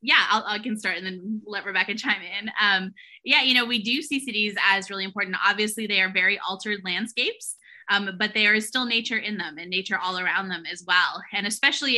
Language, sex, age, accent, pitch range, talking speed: English, female, 20-39, American, 185-220 Hz, 225 wpm